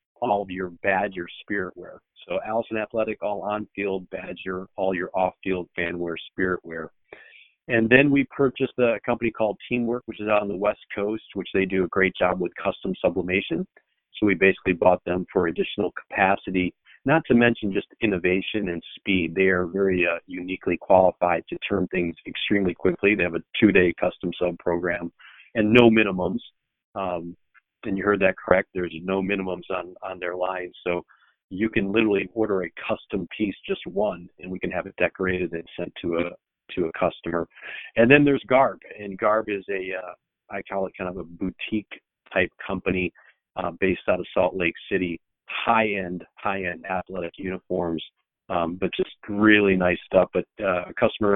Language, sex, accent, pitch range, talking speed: English, male, American, 90-105 Hz, 185 wpm